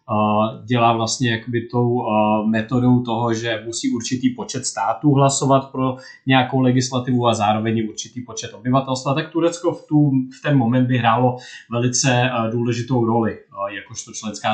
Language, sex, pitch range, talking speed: Czech, male, 115-130 Hz, 140 wpm